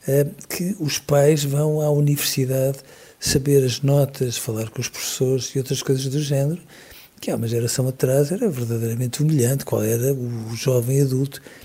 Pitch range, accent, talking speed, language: 120-140 Hz, Portuguese, 160 wpm, Portuguese